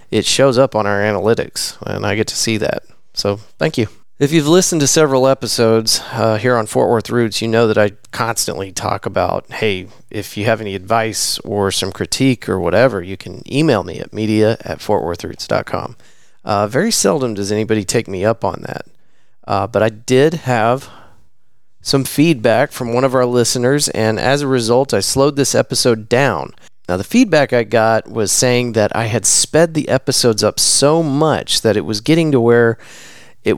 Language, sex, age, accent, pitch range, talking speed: English, male, 30-49, American, 105-135 Hz, 190 wpm